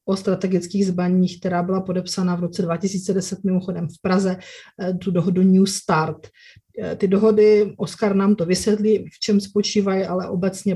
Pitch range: 190-220 Hz